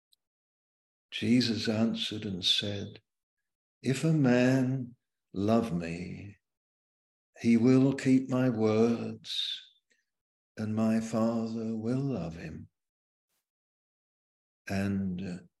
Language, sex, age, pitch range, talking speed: English, male, 60-79, 95-115 Hz, 80 wpm